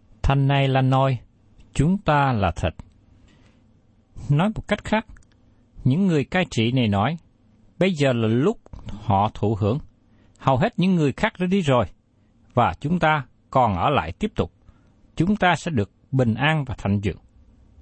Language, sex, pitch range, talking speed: Vietnamese, male, 105-155 Hz, 170 wpm